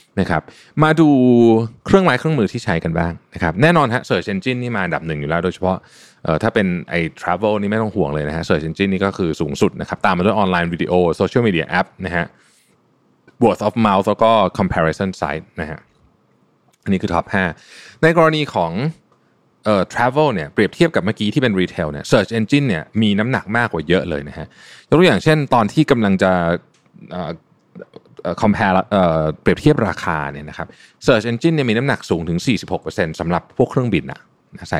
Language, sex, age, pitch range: Thai, male, 20-39, 85-120 Hz